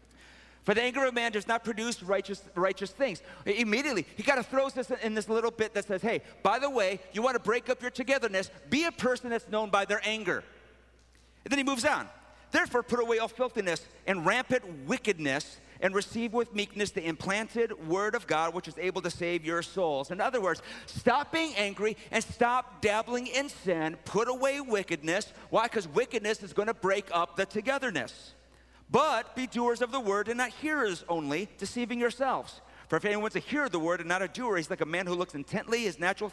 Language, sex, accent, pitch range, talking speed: English, male, American, 170-245 Hz, 210 wpm